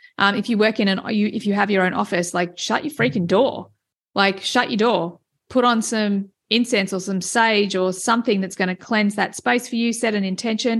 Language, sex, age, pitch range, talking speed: English, female, 30-49, 195-240 Hz, 230 wpm